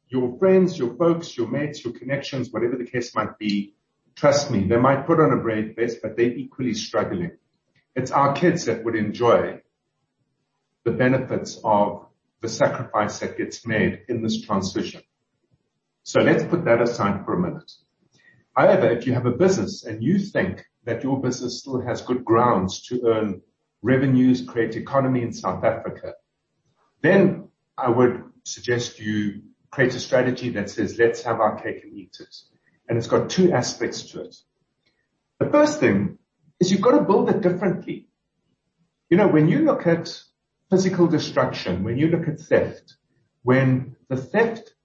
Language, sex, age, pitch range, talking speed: English, male, 50-69, 115-165 Hz, 165 wpm